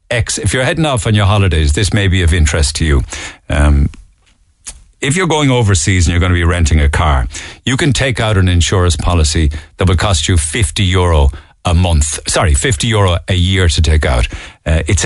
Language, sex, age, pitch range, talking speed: English, male, 50-69, 80-105 Hz, 205 wpm